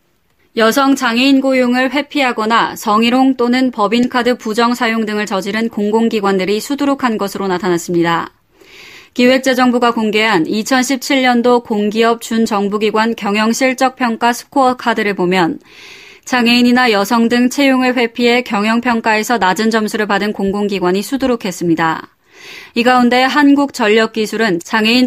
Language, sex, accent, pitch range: Korean, female, native, 210-255 Hz